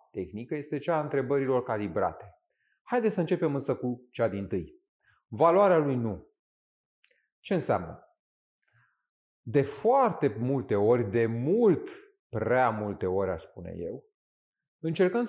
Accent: native